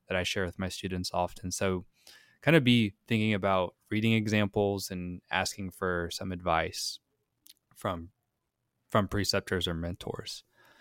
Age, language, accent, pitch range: 20-39, English, American, 90-105 Hz